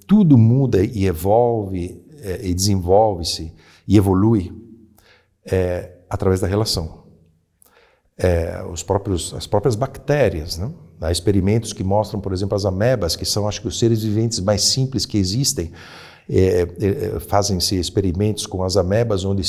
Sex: male